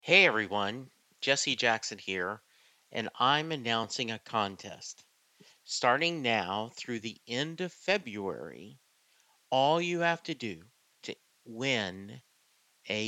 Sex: male